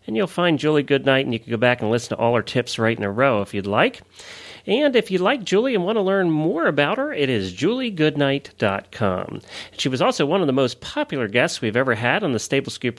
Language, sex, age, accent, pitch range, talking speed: English, male, 40-59, American, 120-185 Hz, 250 wpm